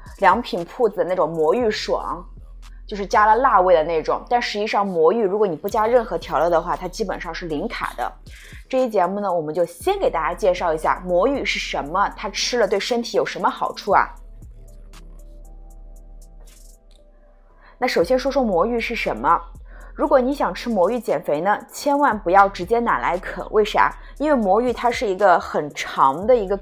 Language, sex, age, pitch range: Chinese, female, 20-39, 180-255 Hz